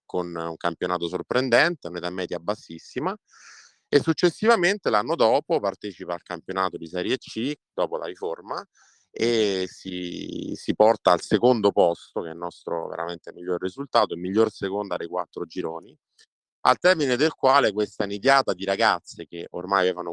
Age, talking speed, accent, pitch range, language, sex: 30-49, 160 wpm, native, 85-105 Hz, Italian, male